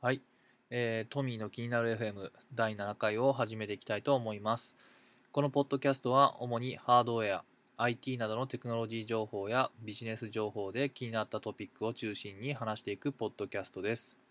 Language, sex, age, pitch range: Japanese, male, 20-39, 105-125 Hz